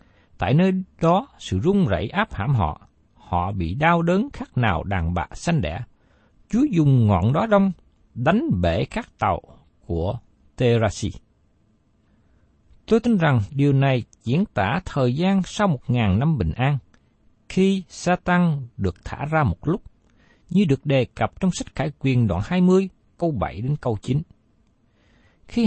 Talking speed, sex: 160 wpm, male